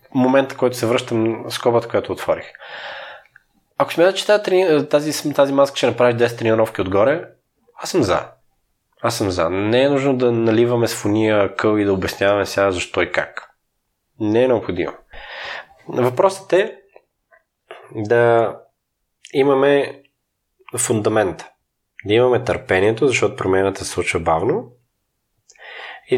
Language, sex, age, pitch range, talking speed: Bulgarian, male, 20-39, 100-140 Hz, 130 wpm